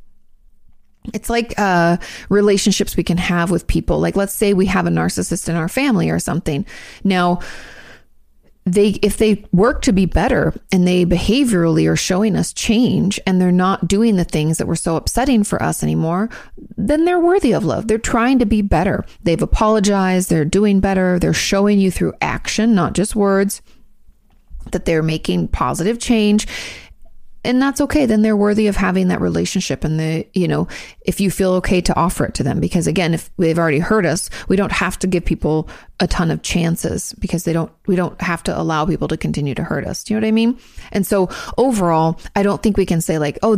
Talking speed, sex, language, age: 200 wpm, female, English, 30-49